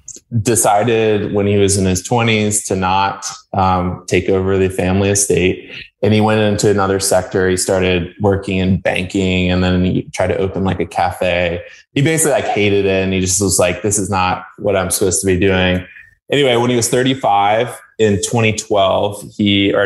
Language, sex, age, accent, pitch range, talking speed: English, male, 20-39, American, 95-110 Hz, 190 wpm